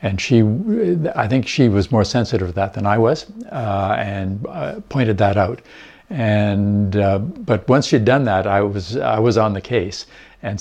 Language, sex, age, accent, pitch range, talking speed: English, male, 60-79, American, 100-120 Hz, 190 wpm